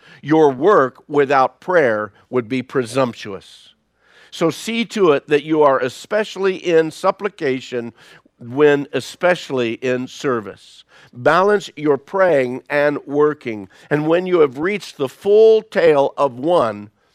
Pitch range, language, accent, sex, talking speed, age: 125-165 Hz, English, American, male, 125 wpm, 50-69